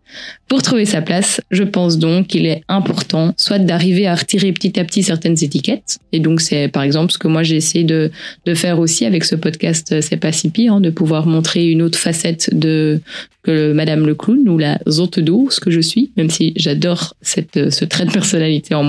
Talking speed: 215 wpm